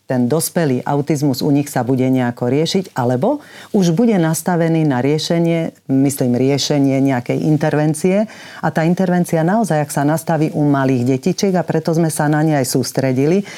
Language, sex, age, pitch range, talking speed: Slovak, female, 40-59, 130-170 Hz, 165 wpm